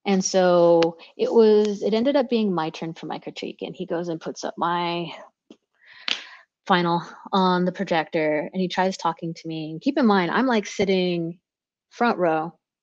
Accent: American